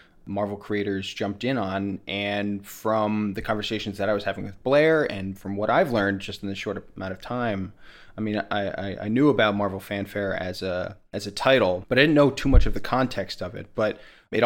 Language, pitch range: English, 100-110 Hz